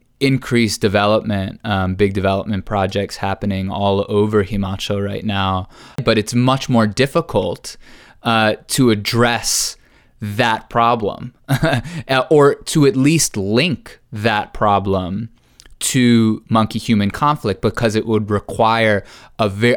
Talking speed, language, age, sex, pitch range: 115 wpm, English, 20-39, male, 105-125 Hz